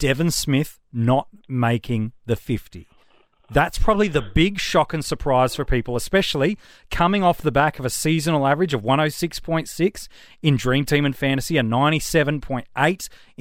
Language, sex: English, male